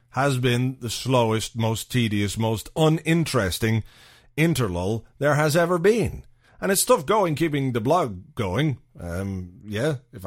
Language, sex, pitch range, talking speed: English, male, 120-145 Hz, 140 wpm